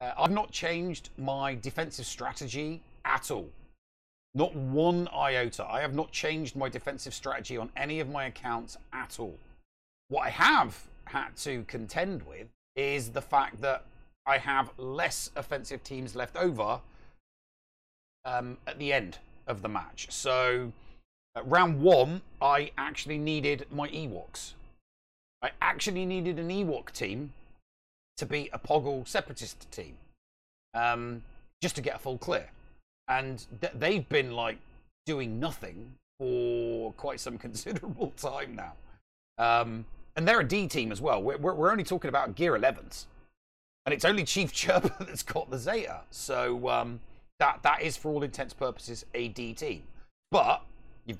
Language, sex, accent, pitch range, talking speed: English, male, British, 115-150 Hz, 150 wpm